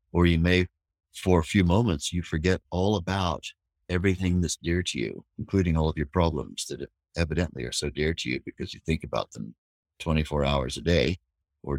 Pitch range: 75-90 Hz